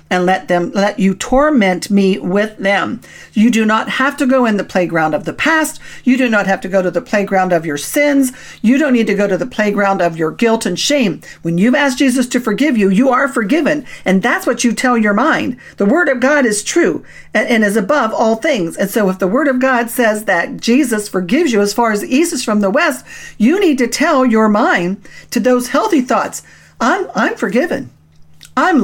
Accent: American